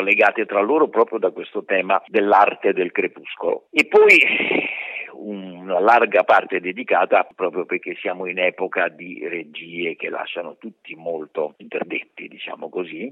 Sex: male